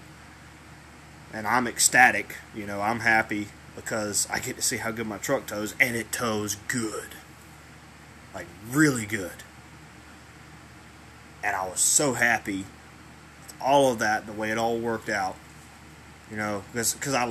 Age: 20-39